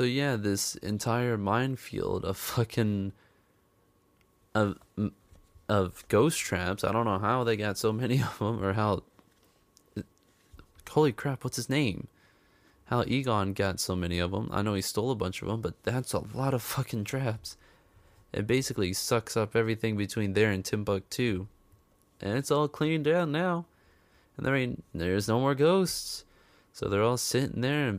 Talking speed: 165 wpm